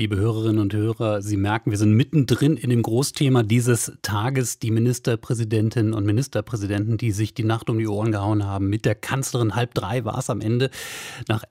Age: 30-49